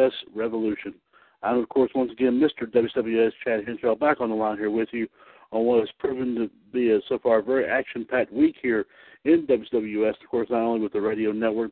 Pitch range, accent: 115-135 Hz, American